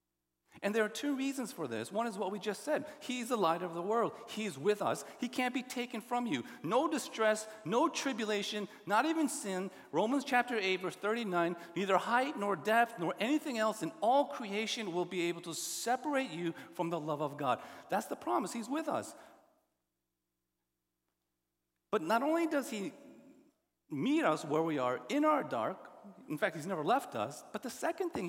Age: 40-59